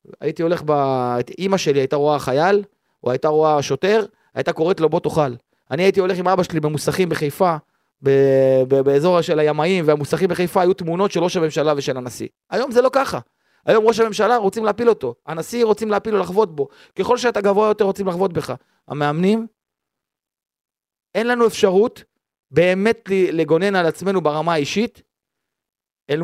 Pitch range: 155-215 Hz